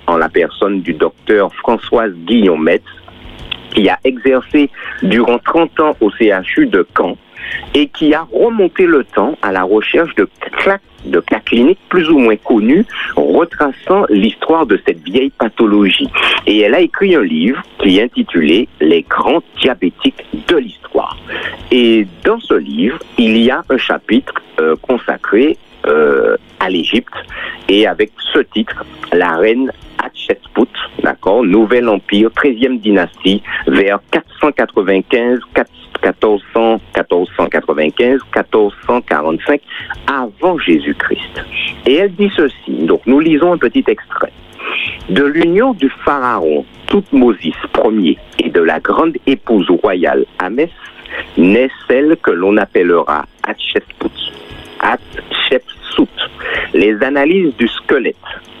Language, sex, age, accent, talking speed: French, male, 50-69, French, 125 wpm